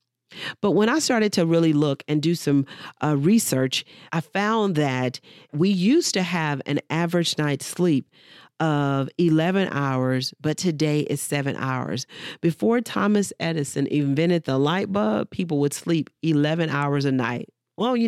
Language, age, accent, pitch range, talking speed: English, 40-59, American, 150-210 Hz, 155 wpm